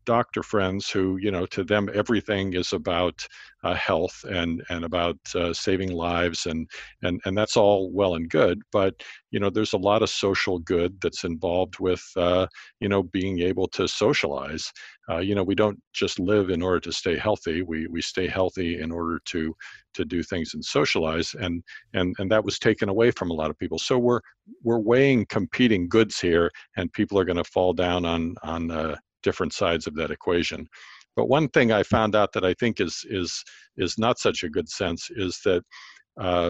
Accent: American